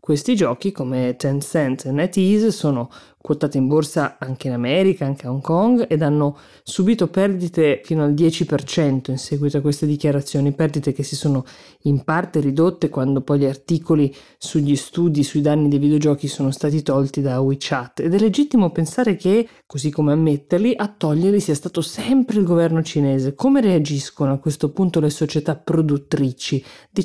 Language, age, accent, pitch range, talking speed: Italian, 20-39, native, 140-170 Hz, 170 wpm